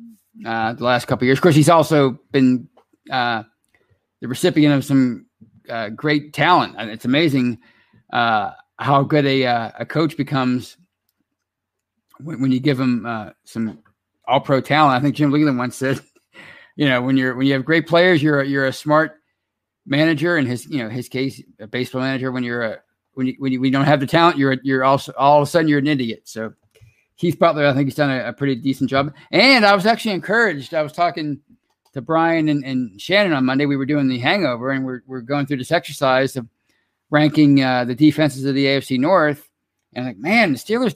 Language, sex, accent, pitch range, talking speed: English, male, American, 125-155 Hz, 215 wpm